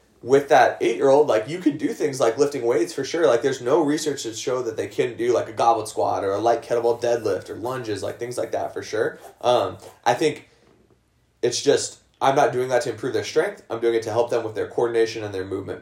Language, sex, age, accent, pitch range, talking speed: English, male, 20-39, American, 115-150 Hz, 245 wpm